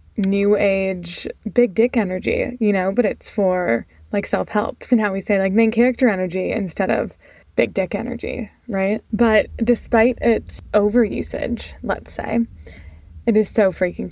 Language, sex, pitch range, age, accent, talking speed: English, female, 190-225 Hz, 20-39, American, 165 wpm